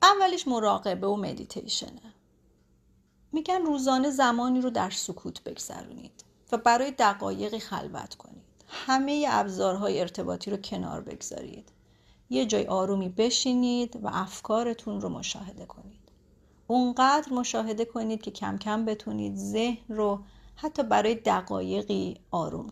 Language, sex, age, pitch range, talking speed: Persian, female, 40-59, 205-265 Hz, 115 wpm